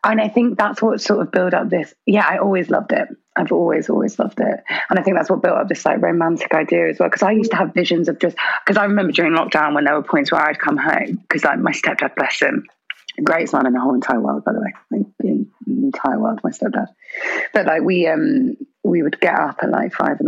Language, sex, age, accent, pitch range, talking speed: English, female, 20-39, British, 175-270 Hz, 260 wpm